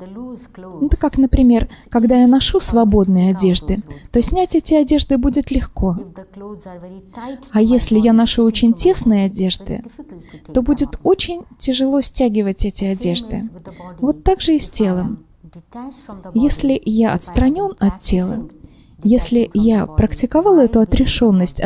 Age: 20-39